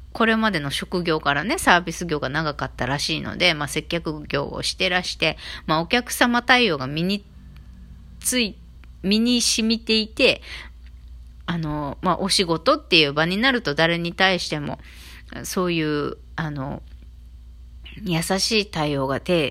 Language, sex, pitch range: Japanese, female, 135-210 Hz